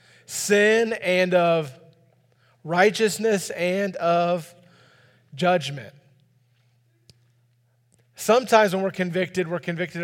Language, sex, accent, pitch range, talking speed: English, male, American, 130-175 Hz, 80 wpm